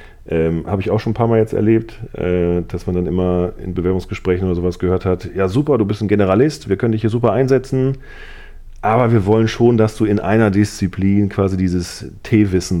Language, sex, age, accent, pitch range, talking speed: German, male, 40-59, German, 90-105 Hz, 210 wpm